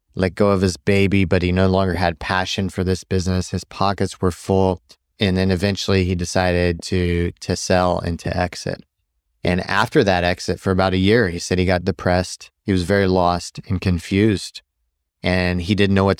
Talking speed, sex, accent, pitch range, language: 195 wpm, male, American, 90-100 Hz, English